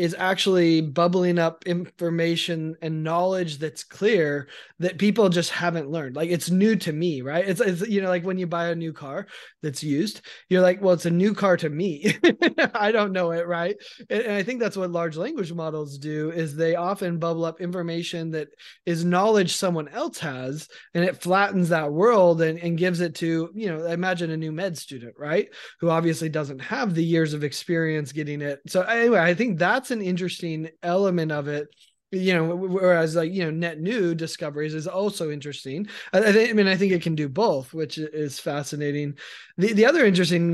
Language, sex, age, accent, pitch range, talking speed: English, male, 20-39, American, 155-185 Hz, 200 wpm